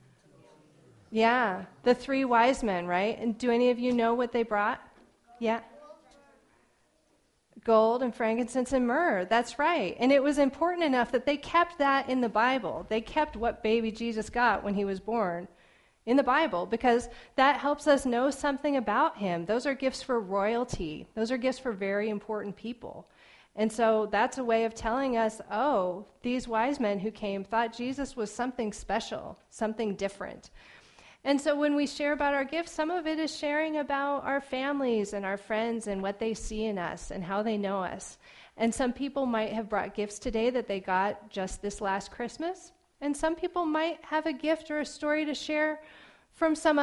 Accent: American